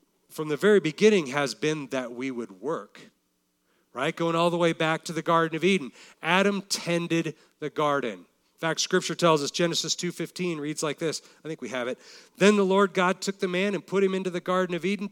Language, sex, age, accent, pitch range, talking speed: English, male, 40-59, American, 140-185 Hz, 220 wpm